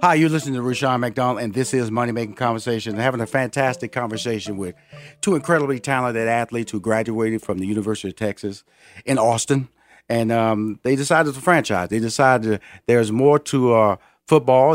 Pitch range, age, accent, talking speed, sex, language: 110-140 Hz, 40-59, American, 180 wpm, male, English